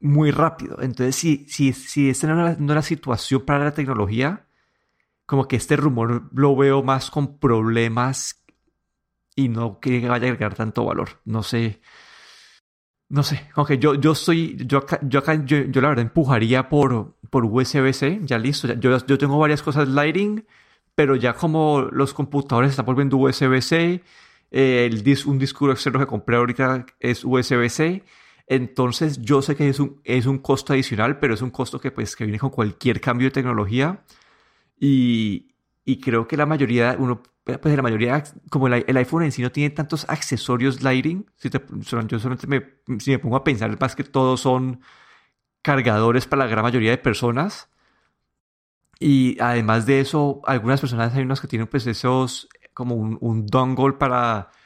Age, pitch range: 30-49, 125-145 Hz